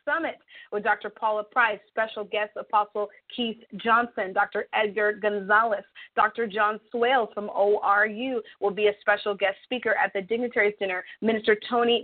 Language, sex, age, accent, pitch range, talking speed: English, female, 30-49, American, 205-235 Hz, 150 wpm